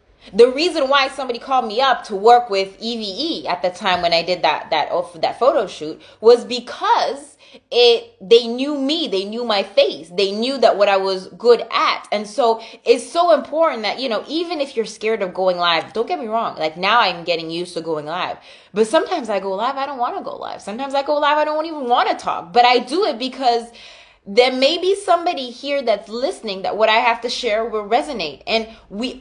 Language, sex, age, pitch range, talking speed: English, female, 20-39, 195-270 Hz, 235 wpm